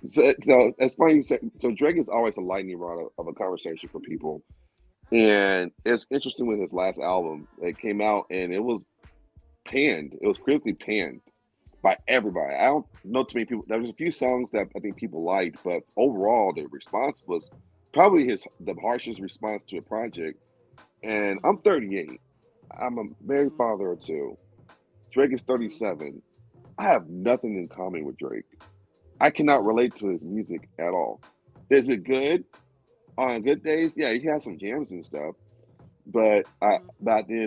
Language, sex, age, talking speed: English, male, 40-59, 180 wpm